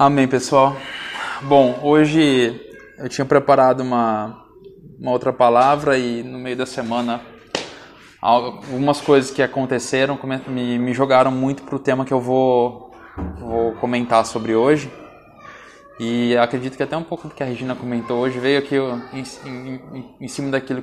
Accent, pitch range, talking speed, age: Brazilian, 120-145 Hz, 155 wpm, 20-39